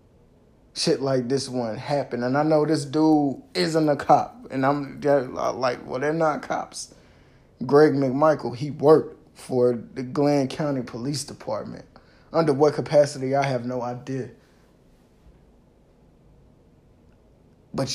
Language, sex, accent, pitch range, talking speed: English, male, American, 120-145 Hz, 125 wpm